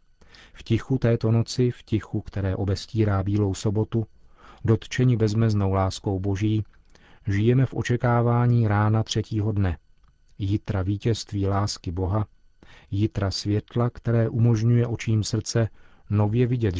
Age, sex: 40-59, male